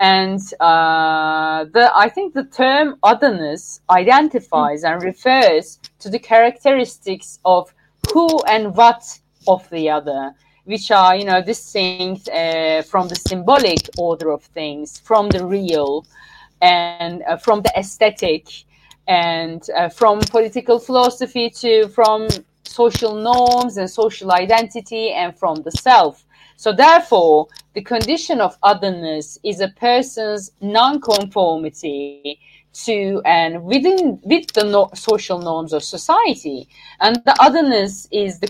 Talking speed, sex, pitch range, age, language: 130 wpm, female, 165-230 Hz, 30-49, English